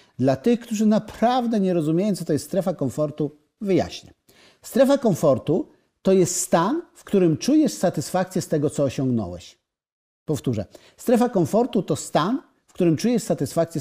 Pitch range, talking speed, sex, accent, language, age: 145-205 Hz, 150 wpm, male, native, Polish, 50-69